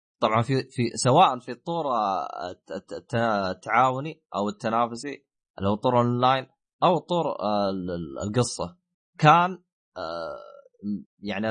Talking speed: 90 wpm